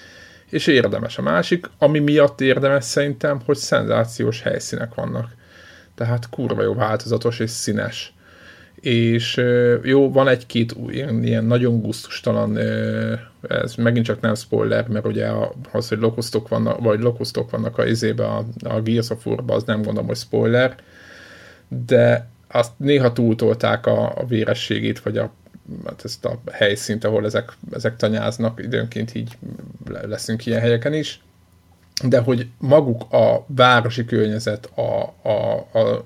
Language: Hungarian